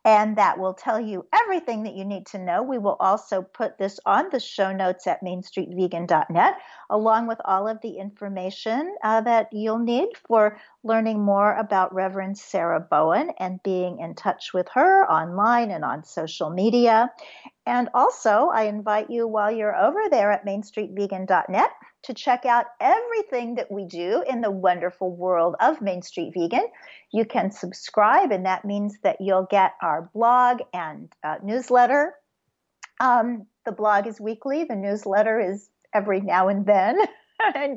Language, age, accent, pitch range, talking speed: English, 50-69, American, 195-255 Hz, 165 wpm